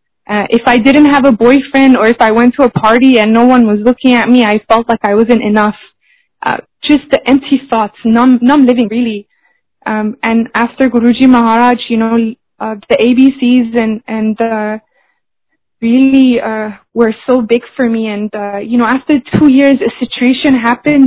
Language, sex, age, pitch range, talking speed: Hindi, female, 20-39, 225-255 Hz, 195 wpm